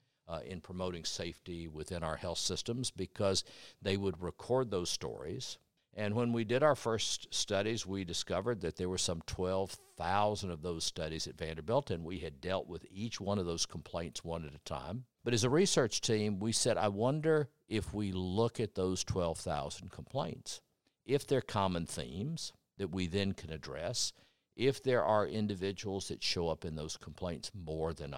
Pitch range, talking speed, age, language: 85-105 Hz, 175 wpm, 50-69, English